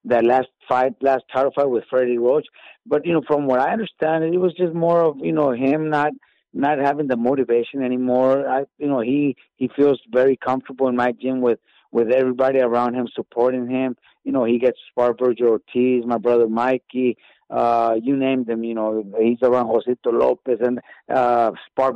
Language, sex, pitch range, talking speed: English, male, 115-135 Hz, 195 wpm